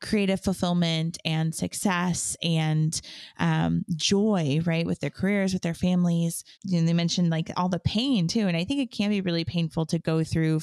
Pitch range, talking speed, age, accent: 160-180 Hz, 185 wpm, 20-39, American